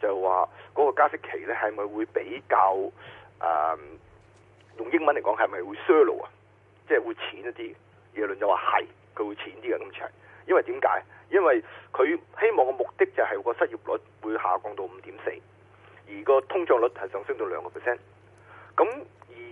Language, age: Chinese, 30-49